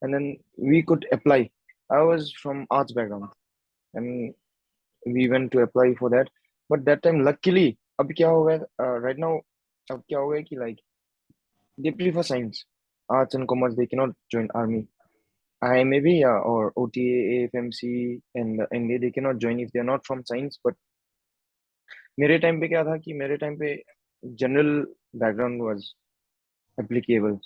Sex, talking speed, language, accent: male, 75 wpm, Hindi, native